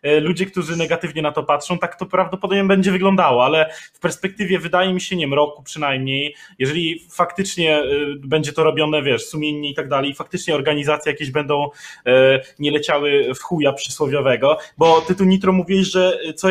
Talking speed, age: 170 wpm, 20-39